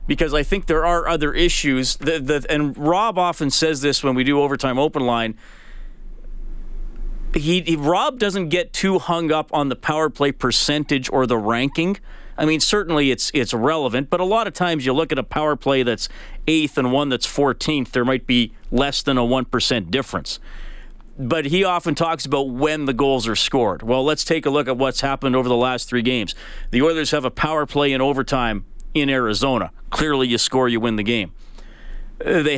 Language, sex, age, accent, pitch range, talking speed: English, male, 40-59, American, 125-155 Hz, 200 wpm